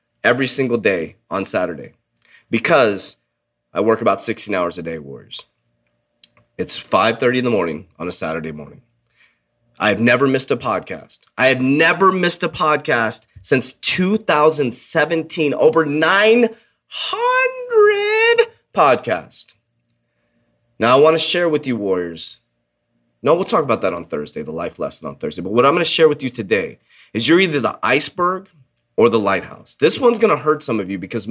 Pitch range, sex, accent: 110-165 Hz, male, American